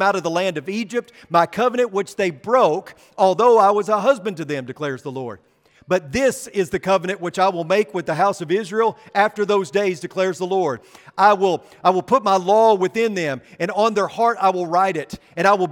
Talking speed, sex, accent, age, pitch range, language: 235 wpm, male, American, 40-59, 170-215 Hz, English